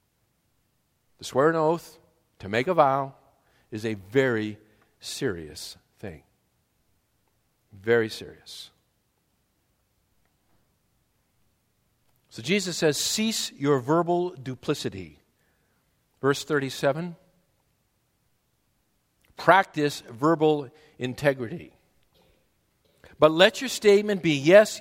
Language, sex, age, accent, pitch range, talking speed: English, male, 50-69, American, 120-180 Hz, 80 wpm